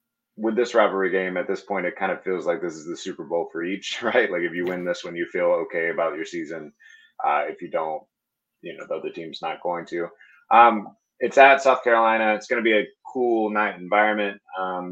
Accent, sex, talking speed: American, male, 235 wpm